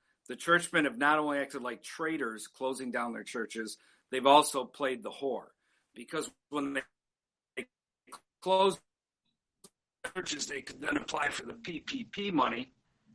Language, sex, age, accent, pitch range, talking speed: English, male, 50-69, American, 125-155 Hz, 135 wpm